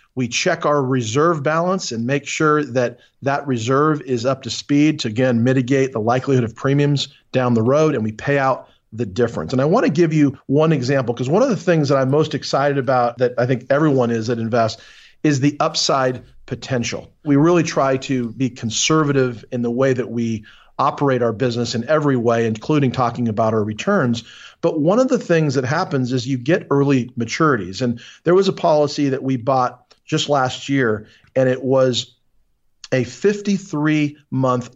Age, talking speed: 40-59, 190 wpm